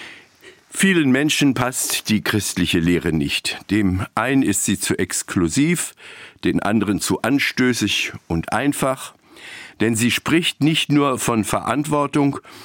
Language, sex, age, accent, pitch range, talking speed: German, male, 60-79, German, 115-175 Hz, 125 wpm